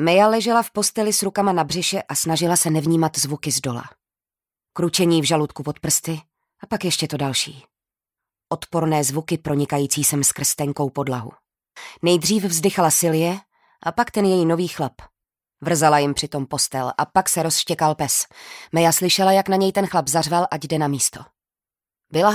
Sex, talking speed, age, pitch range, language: female, 170 wpm, 20-39, 145-185 Hz, Czech